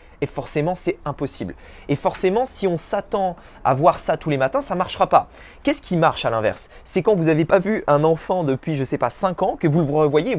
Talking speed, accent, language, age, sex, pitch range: 245 wpm, French, French, 20-39, male, 145-190 Hz